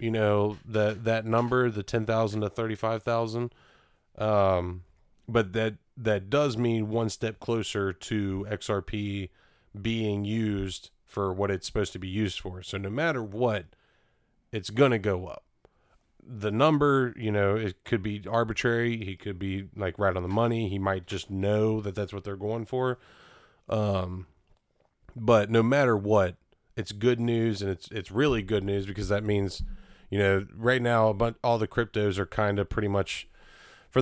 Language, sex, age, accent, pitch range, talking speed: English, male, 30-49, American, 95-115 Hz, 175 wpm